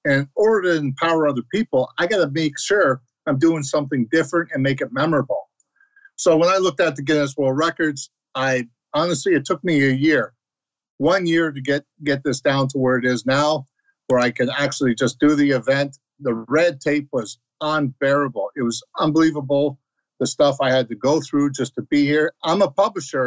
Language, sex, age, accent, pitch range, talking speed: English, male, 50-69, American, 135-165 Hz, 200 wpm